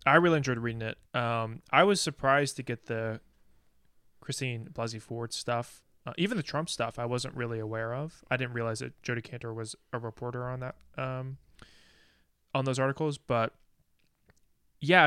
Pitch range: 115-130 Hz